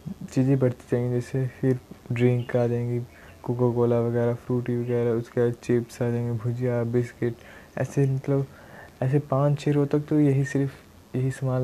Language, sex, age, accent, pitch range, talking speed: Hindi, male, 20-39, native, 120-140 Hz, 170 wpm